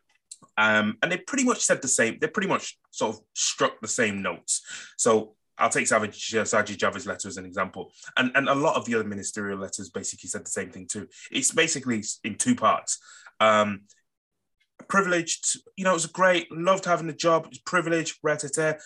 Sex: male